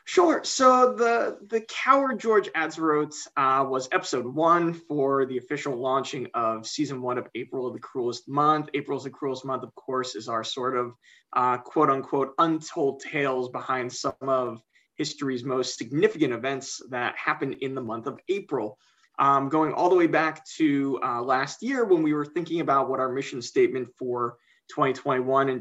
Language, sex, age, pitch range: English, male, 20-39, 130-190 Hz